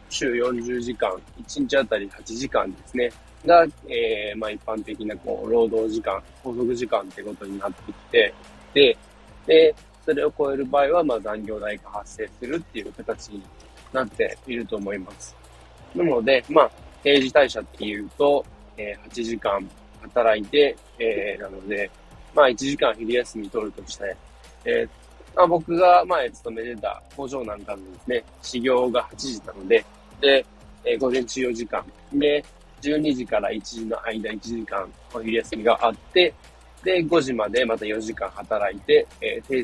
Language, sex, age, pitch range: Japanese, male, 20-39, 105-150 Hz